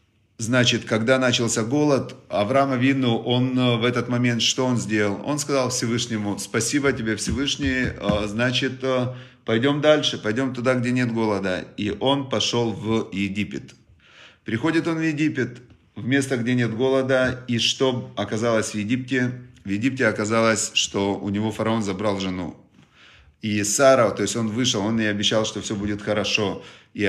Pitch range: 105-125 Hz